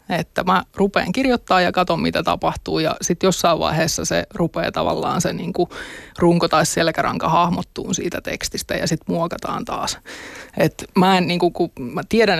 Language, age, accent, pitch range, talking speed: Finnish, 20-39, native, 170-190 Hz, 160 wpm